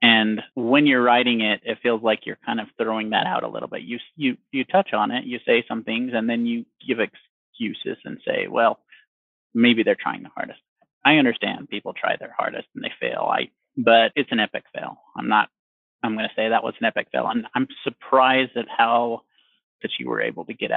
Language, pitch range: English, 115-190 Hz